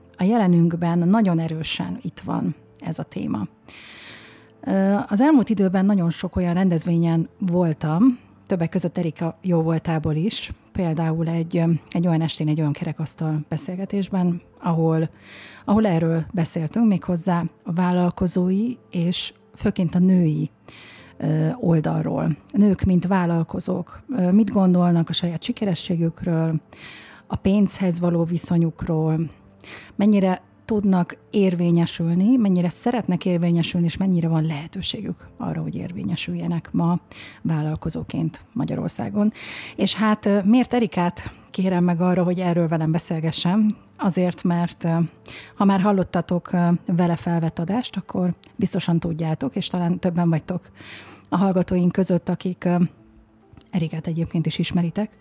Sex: female